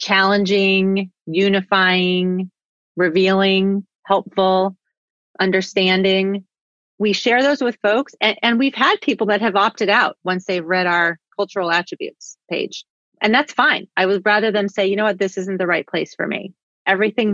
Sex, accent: female, American